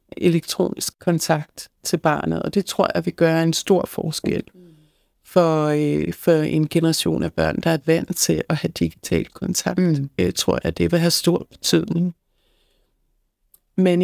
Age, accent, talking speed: 60-79, native, 155 wpm